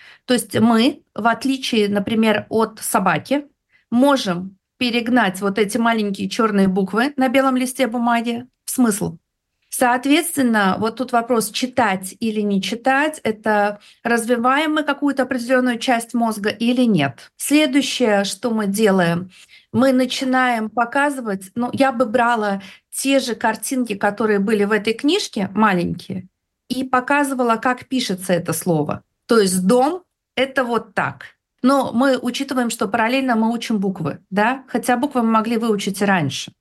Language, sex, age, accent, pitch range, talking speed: Russian, female, 50-69, native, 205-255 Hz, 140 wpm